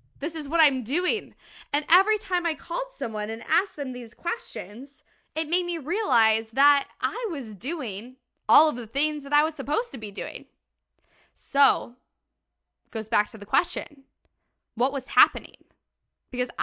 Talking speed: 165 wpm